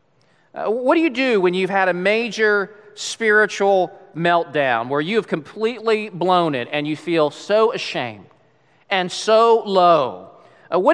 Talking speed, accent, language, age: 155 wpm, American, English, 40-59